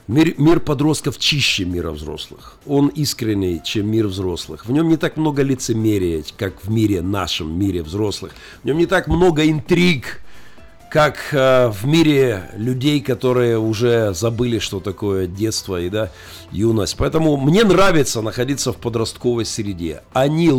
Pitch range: 105-140 Hz